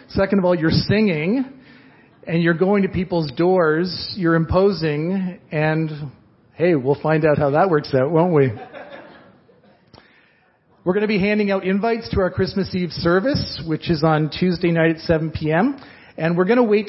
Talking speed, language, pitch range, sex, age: 175 wpm, English, 150-195 Hz, male, 40-59